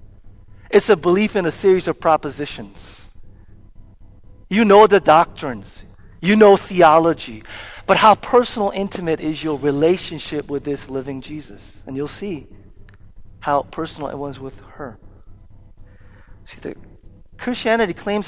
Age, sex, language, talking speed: 40-59, male, English, 130 wpm